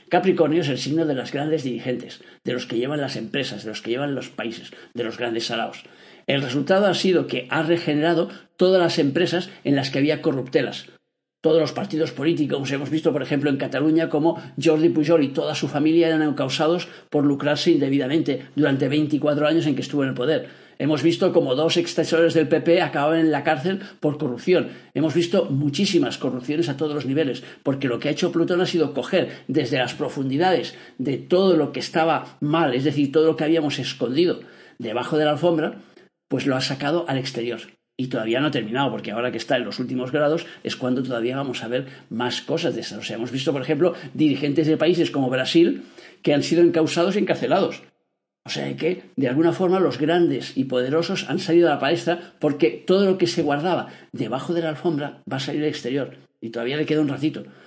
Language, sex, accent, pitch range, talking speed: Spanish, male, Spanish, 140-165 Hz, 210 wpm